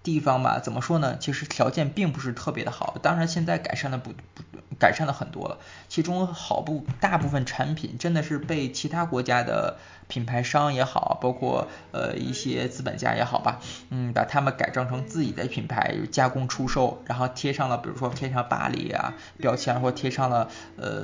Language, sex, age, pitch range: Chinese, male, 20-39, 120-150 Hz